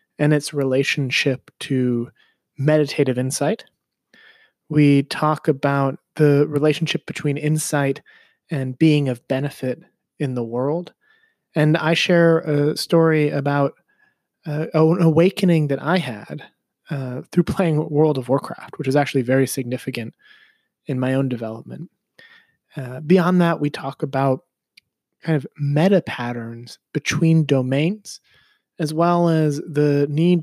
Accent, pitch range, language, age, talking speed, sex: American, 135-165 Hz, English, 30-49, 125 wpm, male